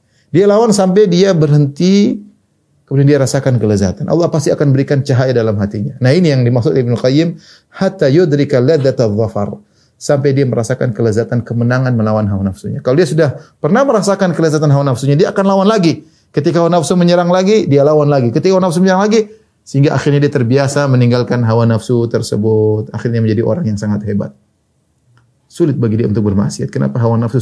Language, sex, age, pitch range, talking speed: Indonesian, male, 30-49, 110-150 Hz, 175 wpm